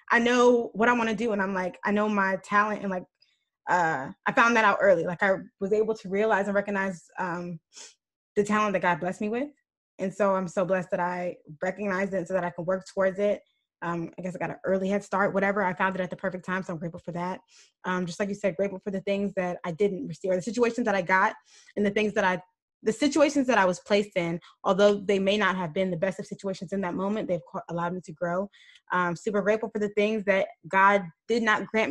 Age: 20-39